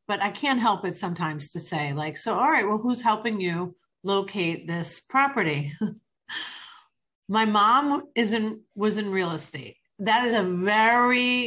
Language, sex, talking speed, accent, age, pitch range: English, female, 160 wpm, American, 40-59, 175-225 Hz